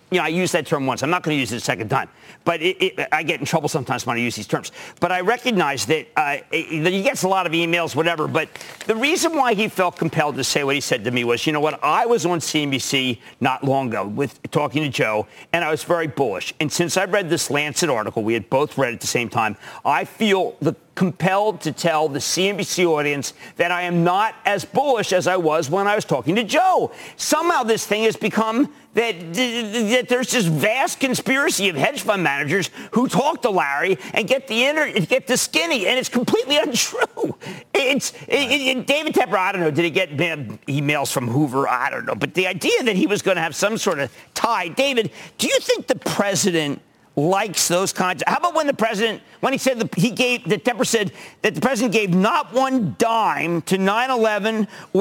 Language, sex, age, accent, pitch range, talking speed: English, male, 50-69, American, 155-235 Hz, 220 wpm